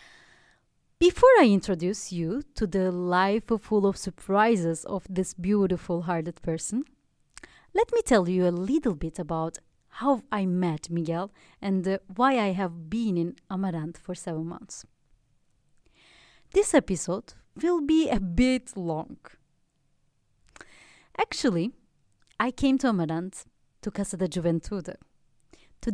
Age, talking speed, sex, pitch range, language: 30-49, 125 wpm, female, 170-240 Hz, English